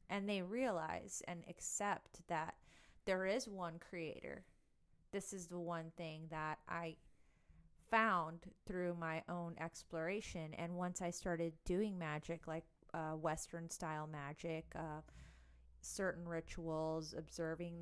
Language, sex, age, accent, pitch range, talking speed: English, female, 30-49, American, 155-180 Hz, 120 wpm